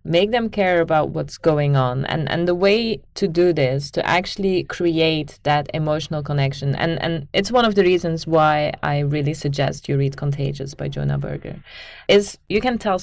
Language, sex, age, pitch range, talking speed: English, female, 30-49, 145-185 Hz, 190 wpm